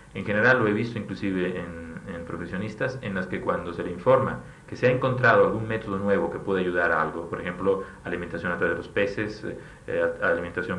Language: Spanish